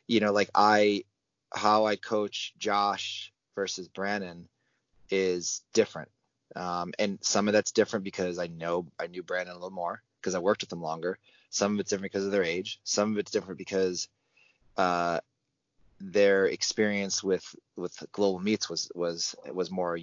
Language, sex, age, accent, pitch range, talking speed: English, male, 20-39, American, 90-105 Hz, 170 wpm